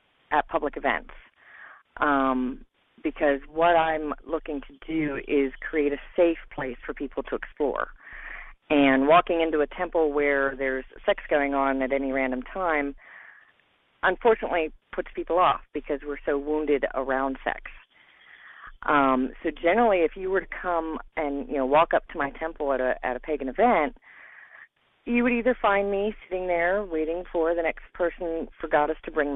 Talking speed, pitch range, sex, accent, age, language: 165 wpm, 140-170 Hz, female, American, 40-59, English